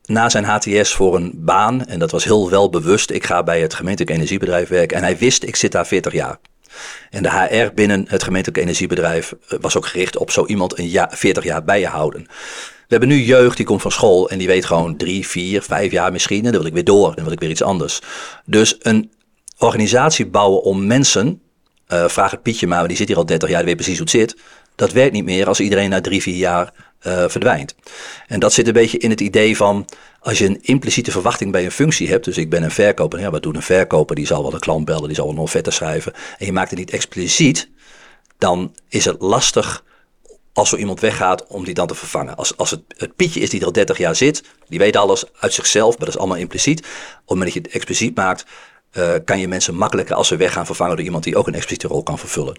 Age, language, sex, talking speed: 40-59, Dutch, male, 250 wpm